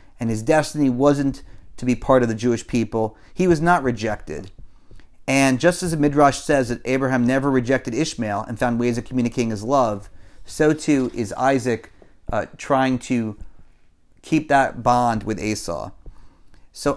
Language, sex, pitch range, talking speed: English, male, 110-135 Hz, 160 wpm